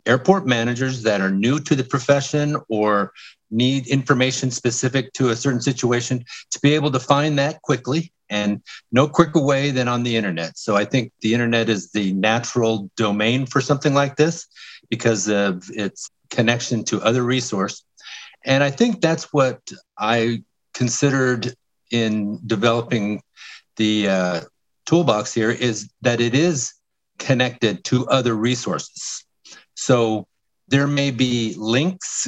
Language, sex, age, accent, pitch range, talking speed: English, male, 50-69, American, 110-135 Hz, 145 wpm